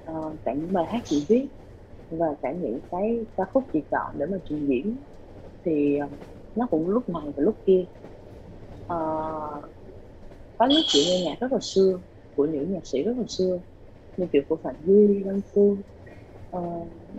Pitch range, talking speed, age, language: 140-215 Hz, 180 wpm, 20-39, Vietnamese